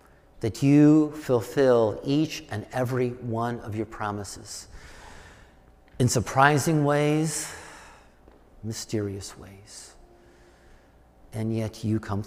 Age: 50-69